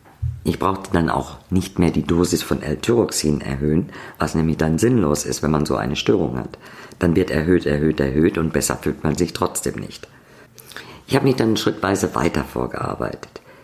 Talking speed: 180 wpm